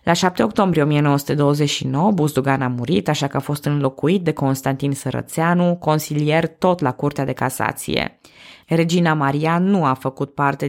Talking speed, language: 150 wpm, Romanian